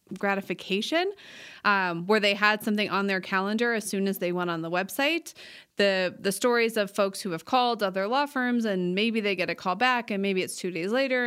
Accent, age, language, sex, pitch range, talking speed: American, 20-39, English, female, 190-240 Hz, 220 wpm